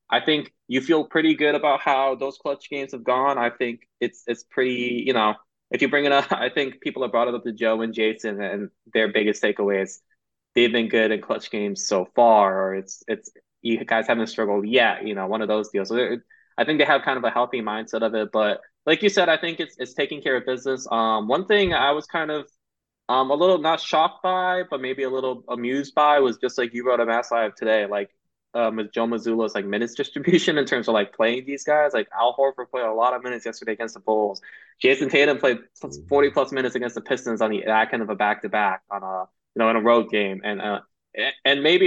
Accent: American